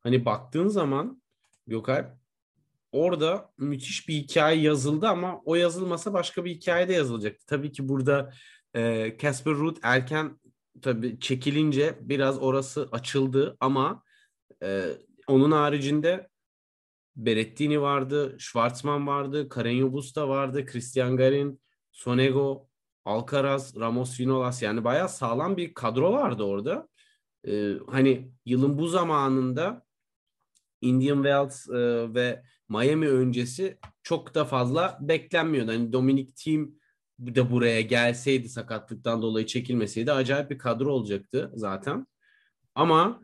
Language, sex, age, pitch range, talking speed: Turkish, male, 30-49, 120-150 Hz, 115 wpm